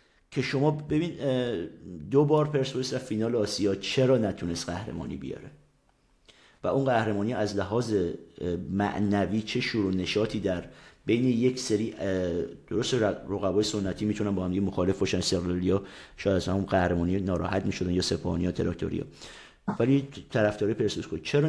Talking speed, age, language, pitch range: 135 wpm, 50-69, Persian, 95-130 Hz